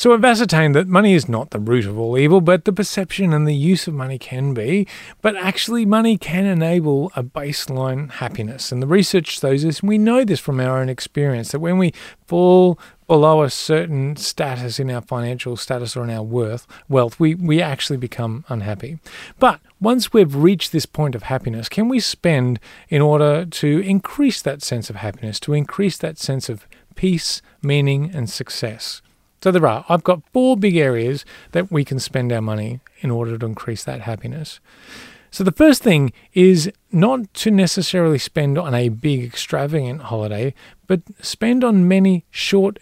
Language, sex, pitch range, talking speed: English, male, 130-185 Hz, 185 wpm